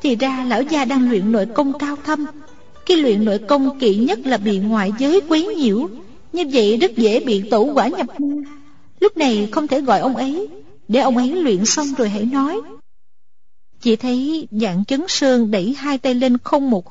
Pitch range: 215-280 Hz